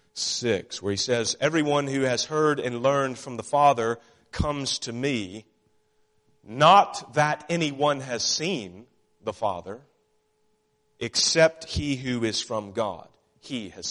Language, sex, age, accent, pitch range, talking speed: English, male, 40-59, American, 105-140 Hz, 135 wpm